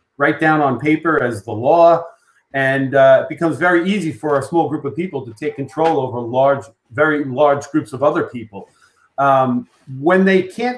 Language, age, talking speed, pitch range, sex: English, 40-59, 190 wpm, 140-190 Hz, male